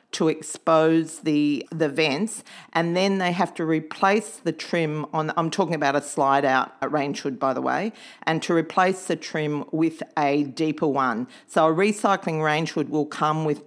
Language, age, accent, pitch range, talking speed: English, 40-59, Australian, 150-185 Hz, 180 wpm